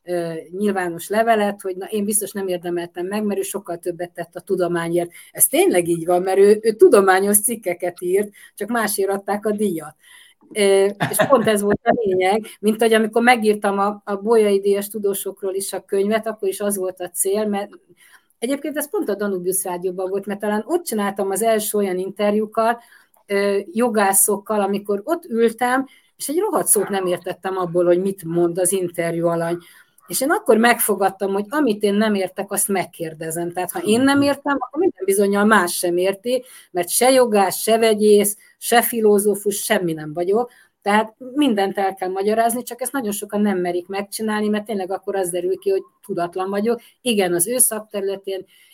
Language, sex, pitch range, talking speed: Hungarian, female, 185-220 Hz, 175 wpm